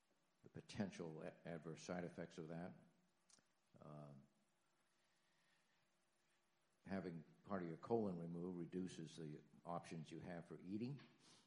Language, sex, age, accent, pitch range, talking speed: English, male, 60-79, American, 80-95 Hz, 110 wpm